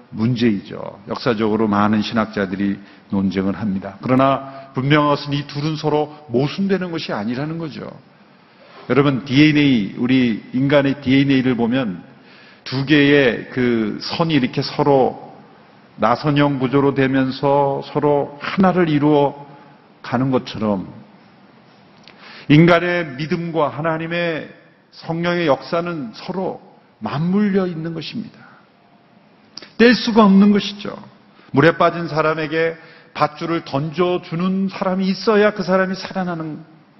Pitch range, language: 135-190 Hz, Korean